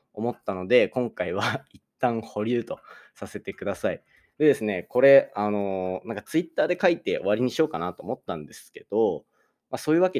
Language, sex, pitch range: Japanese, male, 105-160 Hz